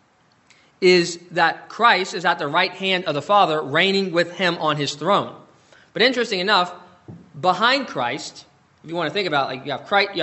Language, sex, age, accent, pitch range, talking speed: English, male, 20-39, American, 145-185 Hz, 180 wpm